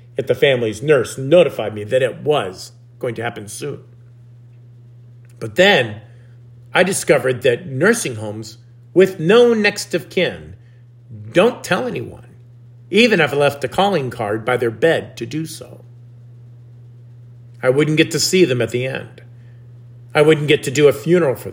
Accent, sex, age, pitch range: American, male, 50-69, 120-165 Hz